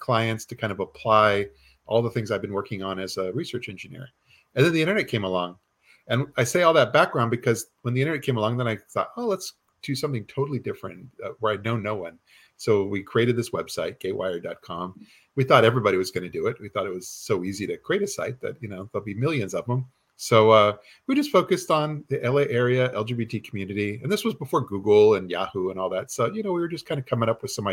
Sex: male